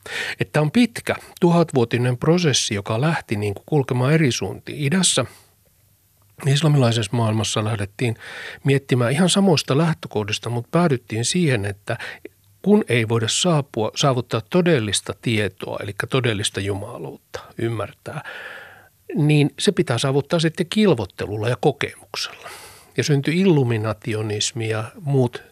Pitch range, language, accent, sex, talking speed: 110-145 Hz, Finnish, native, male, 115 wpm